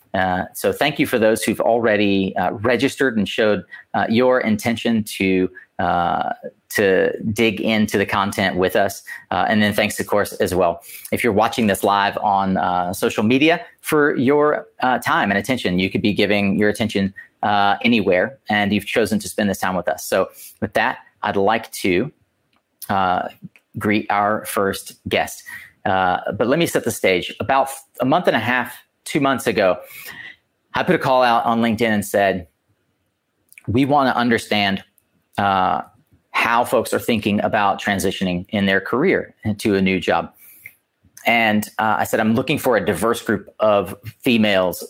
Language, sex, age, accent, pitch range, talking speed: English, male, 30-49, American, 95-115 Hz, 175 wpm